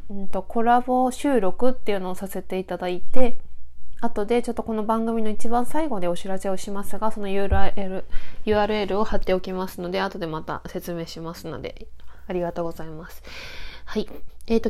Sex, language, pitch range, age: female, Japanese, 175-220 Hz, 20-39